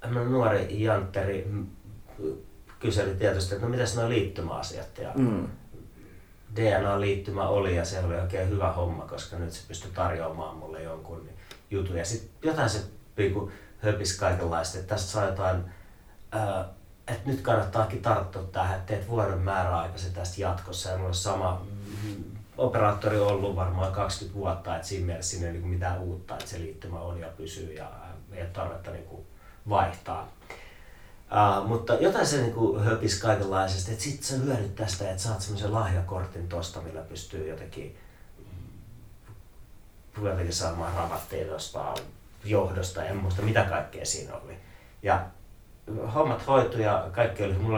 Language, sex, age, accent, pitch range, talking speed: Finnish, male, 30-49, native, 90-105 Hz, 135 wpm